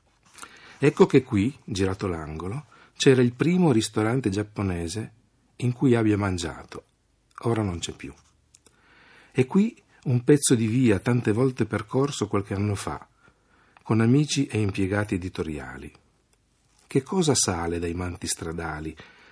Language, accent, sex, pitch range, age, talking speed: Italian, native, male, 90-125 Hz, 50-69, 125 wpm